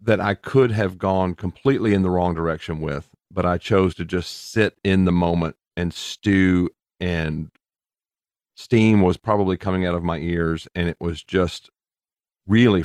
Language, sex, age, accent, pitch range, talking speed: English, male, 40-59, American, 85-100 Hz, 170 wpm